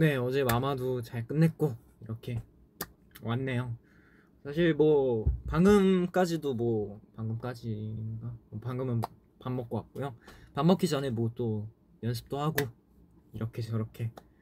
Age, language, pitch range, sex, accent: 20-39, Korean, 110-140 Hz, male, native